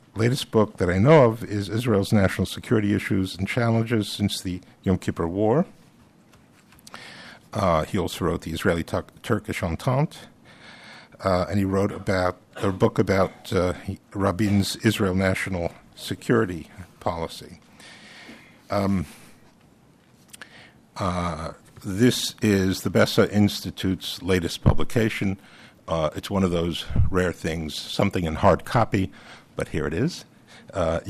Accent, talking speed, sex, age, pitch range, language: American, 125 wpm, male, 50-69, 90-110 Hz, English